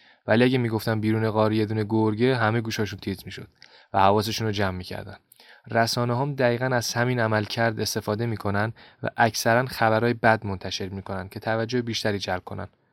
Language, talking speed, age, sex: Persian, 165 wpm, 20-39, male